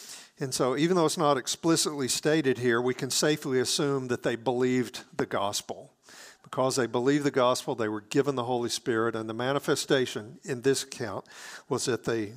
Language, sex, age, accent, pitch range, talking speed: English, male, 50-69, American, 125-170 Hz, 185 wpm